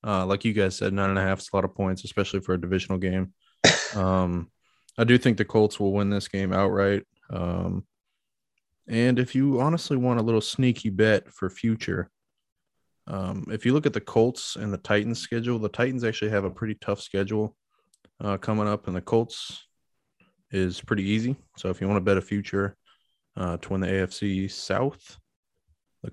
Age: 20-39